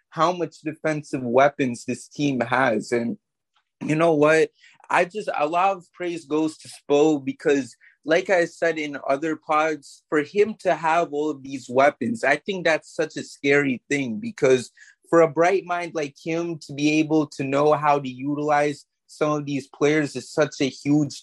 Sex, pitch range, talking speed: male, 140-170 Hz, 185 wpm